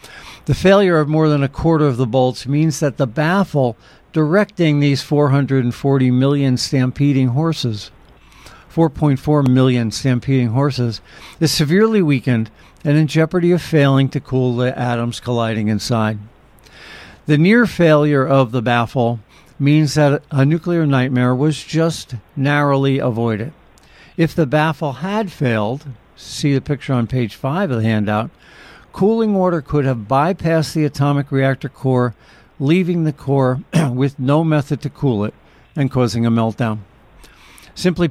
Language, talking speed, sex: English, 140 wpm, male